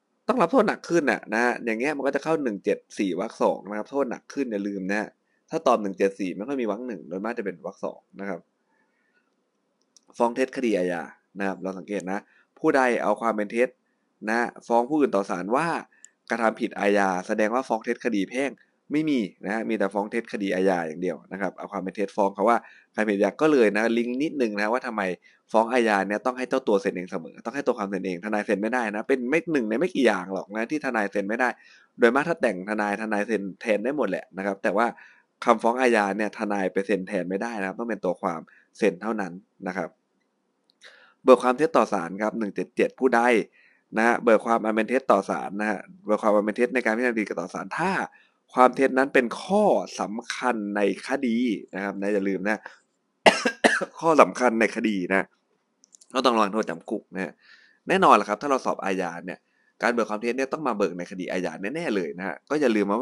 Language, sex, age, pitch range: Thai, male, 20-39, 100-125 Hz